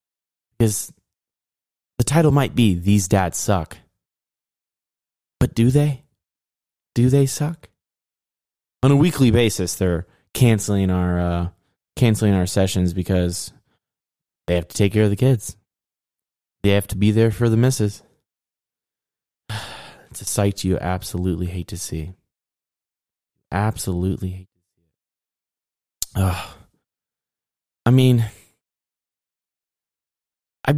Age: 20-39